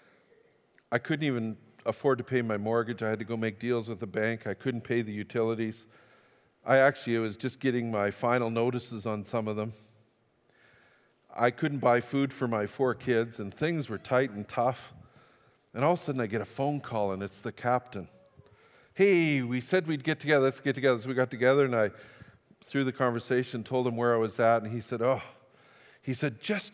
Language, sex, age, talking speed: English, male, 50-69, 210 wpm